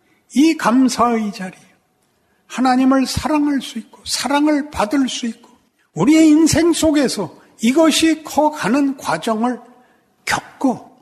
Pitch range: 170-270 Hz